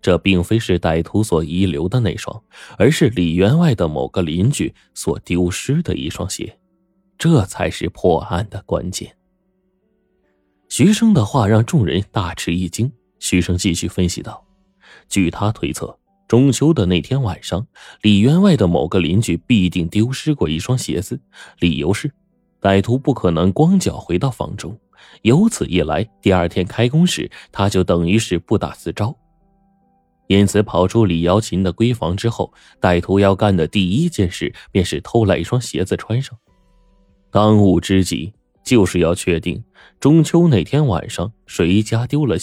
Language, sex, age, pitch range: Chinese, male, 20-39, 90-130 Hz